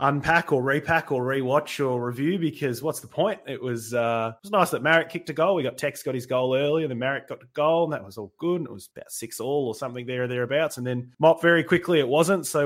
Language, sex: English, male